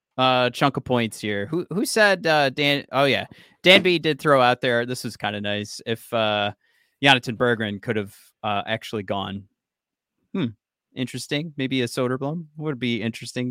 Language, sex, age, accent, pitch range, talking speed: English, male, 30-49, American, 115-150 Hz, 180 wpm